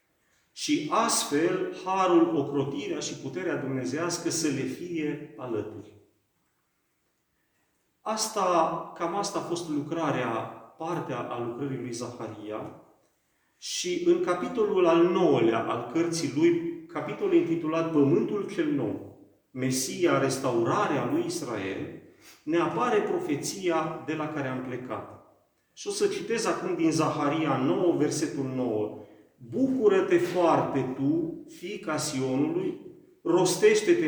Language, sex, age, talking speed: Romanian, male, 40-59, 110 wpm